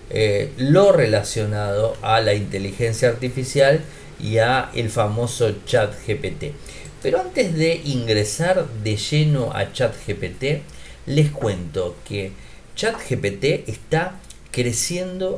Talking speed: 100 wpm